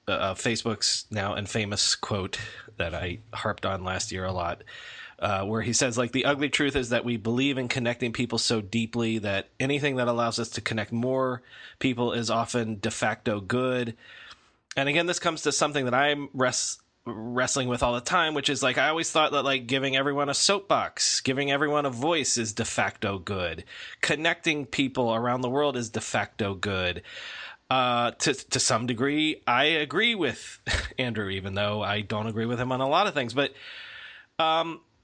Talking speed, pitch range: 190 wpm, 115-150 Hz